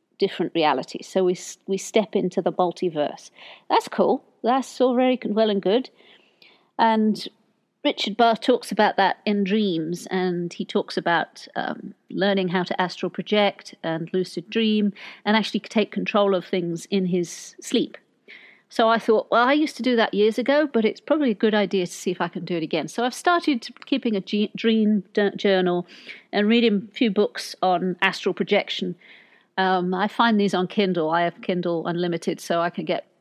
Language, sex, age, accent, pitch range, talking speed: English, female, 50-69, British, 185-230 Hz, 185 wpm